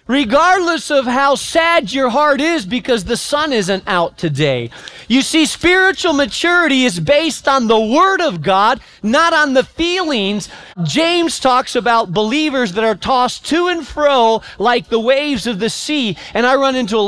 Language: English